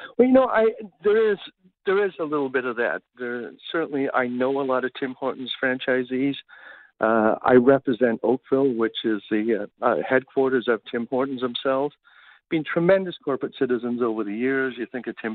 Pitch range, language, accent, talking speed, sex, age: 115-135 Hz, English, American, 185 wpm, male, 60-79